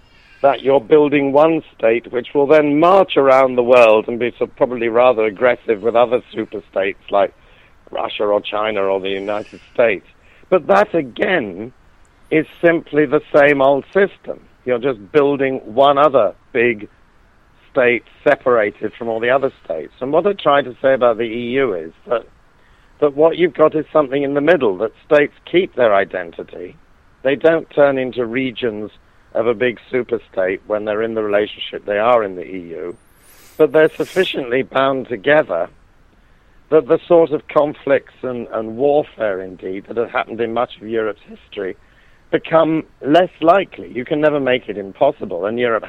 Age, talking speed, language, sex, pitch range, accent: 50-69, 170 wpm, English, male, 115-150 Hz, British